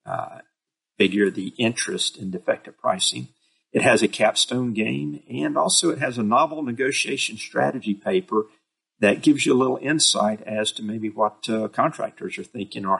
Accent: American